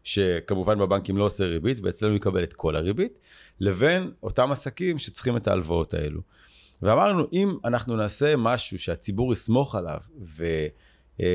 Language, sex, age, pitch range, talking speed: Hebrew, male, 30-49, 95-135 Hz, 140 wpm